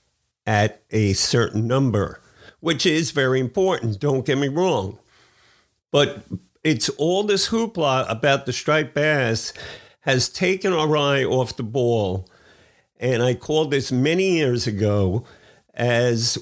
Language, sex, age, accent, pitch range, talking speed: English, male, 50-69, American, 120-145 Hz, 130 wpm